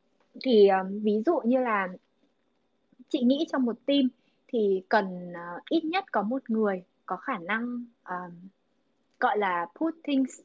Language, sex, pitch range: Vietnamese, female, 190-260 Hz